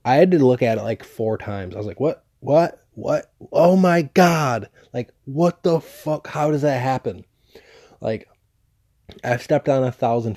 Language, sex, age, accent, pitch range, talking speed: English, male, 20-39, American, 105-125 Hz, 185 wpm